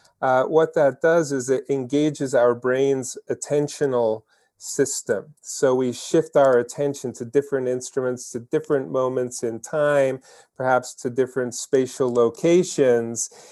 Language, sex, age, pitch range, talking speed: English, male, 40-59, 120-145 Hz, 130 wpm